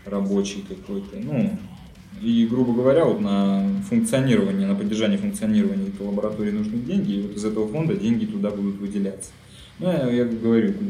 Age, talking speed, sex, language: 20-39, 155 wpm, male, Russian